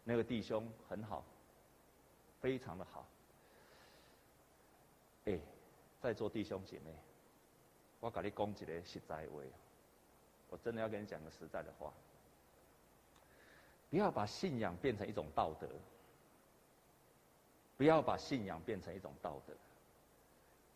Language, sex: Chinese, male